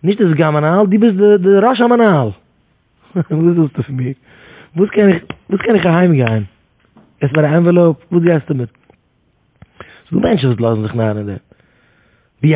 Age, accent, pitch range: 30-49, Dutch, 125-175 Hz